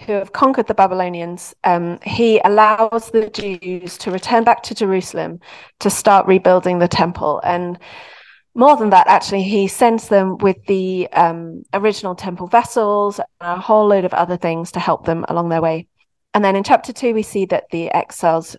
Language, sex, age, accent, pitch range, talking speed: English, female, 30-49, British, 180-220 Hz, 185 wpm